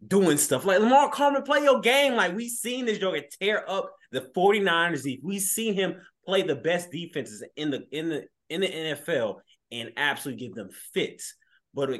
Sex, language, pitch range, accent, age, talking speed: male, English, 125-175 Hz, American, 20-39, 195 wpm